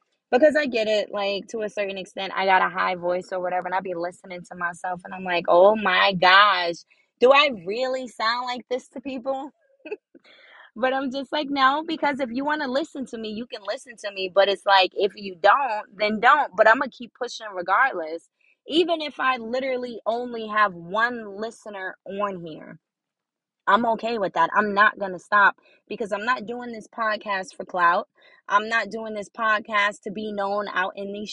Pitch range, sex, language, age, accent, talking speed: 195-250 Hz, female, English, 20-39, American, 205 wpm